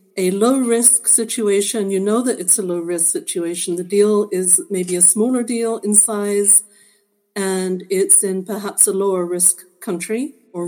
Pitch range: 190-230 Hz